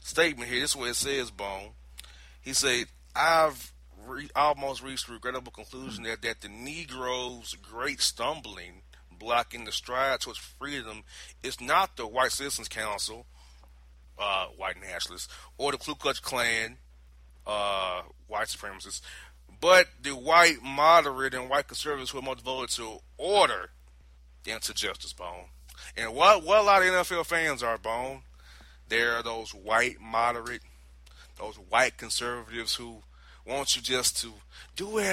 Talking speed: 150 wpm